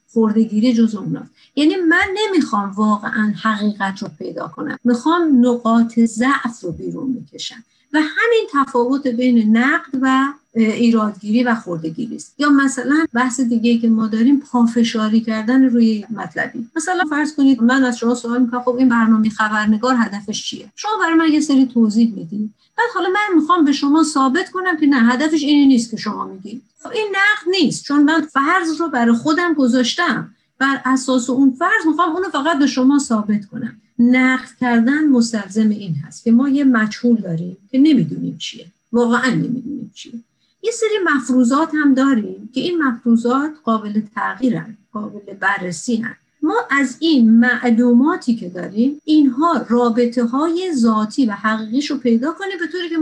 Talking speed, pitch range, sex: 160 wpm, 225-285 Hz, female